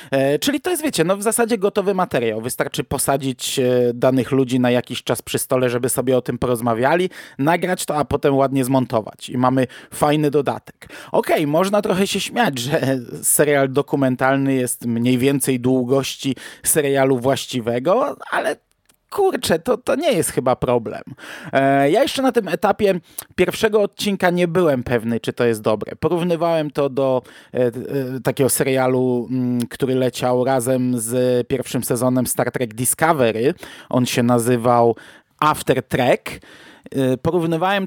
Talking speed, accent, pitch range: 140 wpm, native, 125-155 Hz